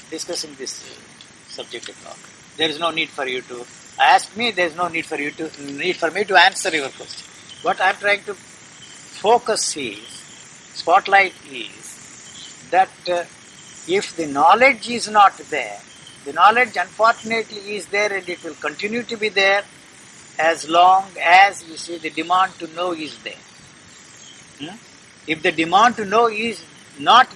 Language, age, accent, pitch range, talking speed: English, 60-79, Indian, 160-210 Hz, 165 wpm